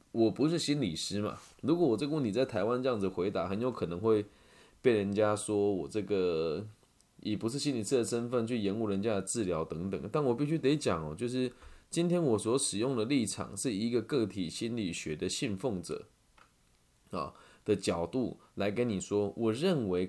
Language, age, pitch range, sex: Chinese, 20-39, 100-135 Hz, male